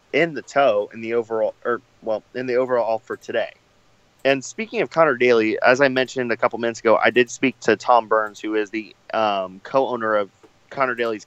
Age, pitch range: 30-49, 110-125 Hz